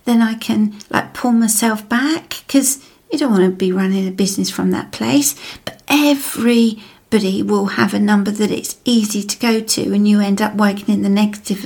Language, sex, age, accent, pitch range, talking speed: English, female, 40-59, British, 205-250 Hz, 200 wpm